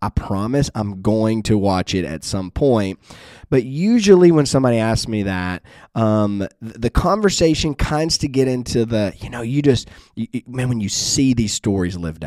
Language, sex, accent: English, male, American